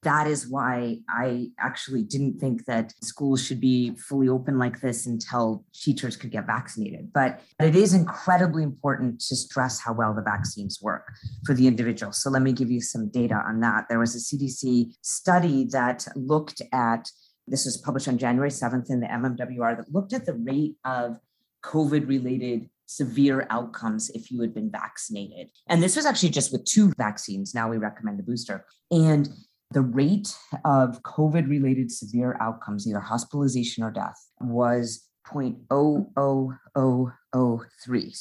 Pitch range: 115-140 Hz